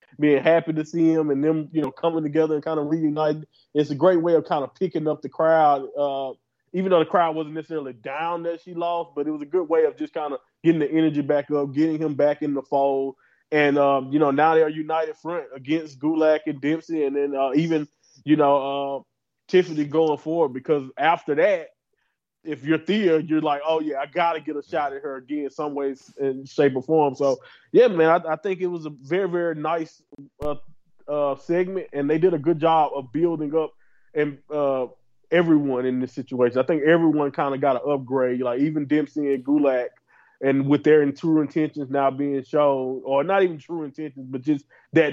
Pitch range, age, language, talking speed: 140-160 Hz, 20-39, English, 220 wpm